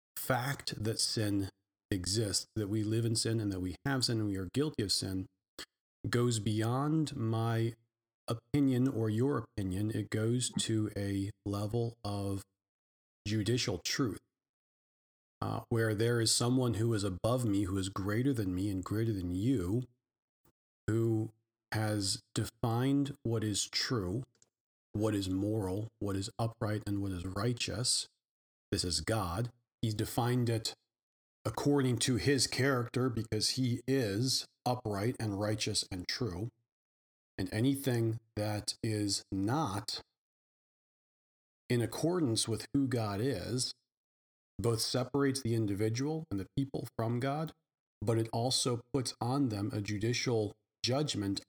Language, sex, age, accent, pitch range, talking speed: English, male, 40-59, American, 100-125 Hz, 135 wpm